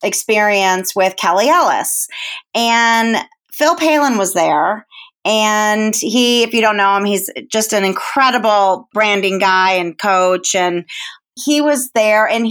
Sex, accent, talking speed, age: female, American, 140 wpm, 30-49